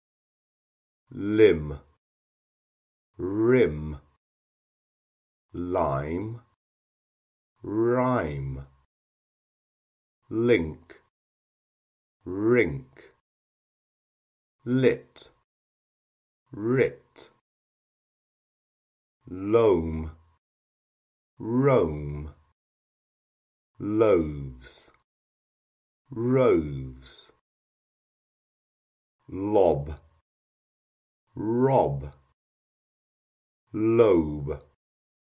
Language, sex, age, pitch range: Persian, male, 50-69, 70-115 Hz